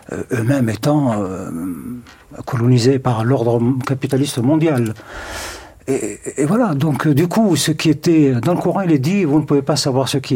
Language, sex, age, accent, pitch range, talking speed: French, male, 60-79, French, 120-150 Hz, 170 wpm